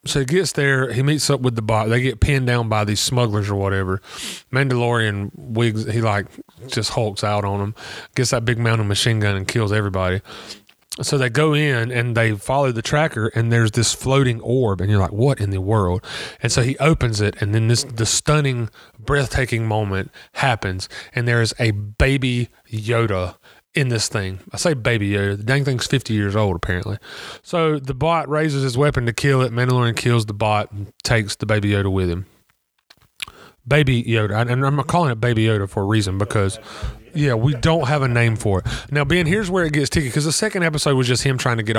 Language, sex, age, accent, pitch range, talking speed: English, male, 30-49, American, 110-140 Hz, 215 wpm